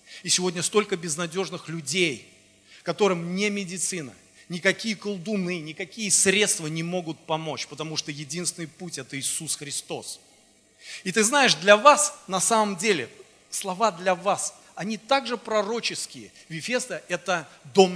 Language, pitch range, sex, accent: Russian, 155-195 Hz, male, native